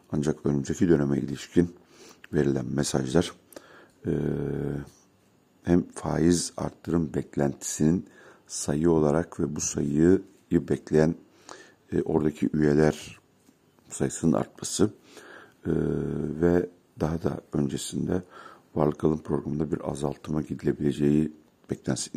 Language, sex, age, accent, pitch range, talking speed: Turkish, male, 60-79, native, 70-85 Hz, 90 wpm